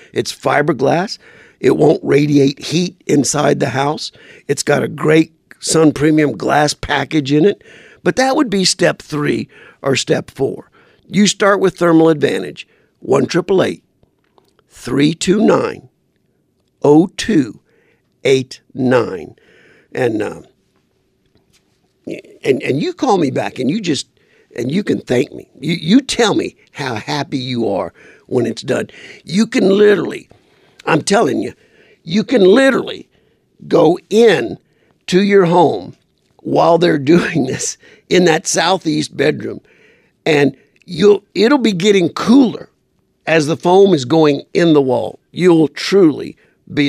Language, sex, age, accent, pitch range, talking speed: English, male, 50-69, American, 150-220 Hz, 130 wpm